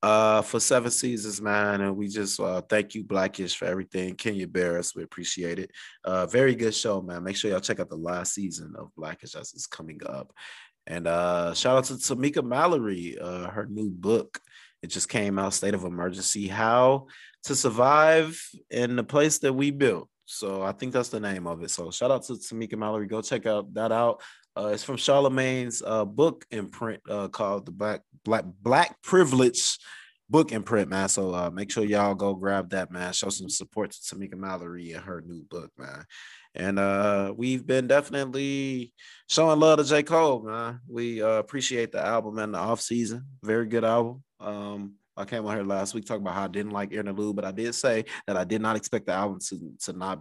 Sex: male